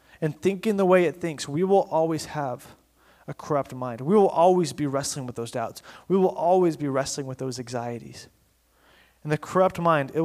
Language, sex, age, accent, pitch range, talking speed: English, male, 30-49, American, 135-170 Hz, 200 wpm